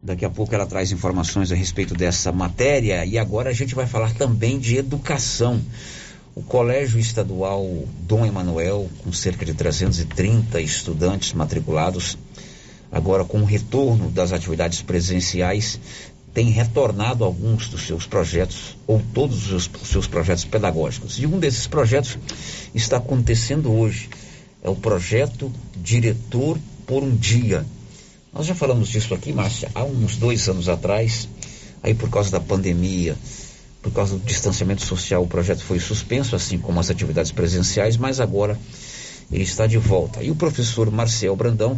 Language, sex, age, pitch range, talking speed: Portuguese, male, 60-79, 95-120 Hz, 150 wpm